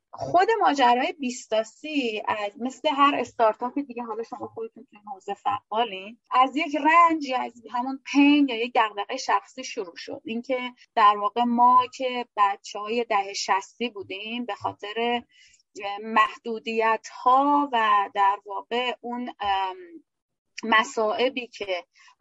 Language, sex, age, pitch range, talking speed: Persian, female, 30-49, 205-260 Hz, 125 wpm